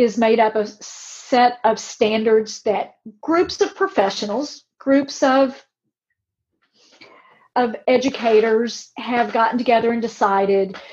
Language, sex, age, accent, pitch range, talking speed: English, female, 40-59, American, 215-265 Hz, 115 wpm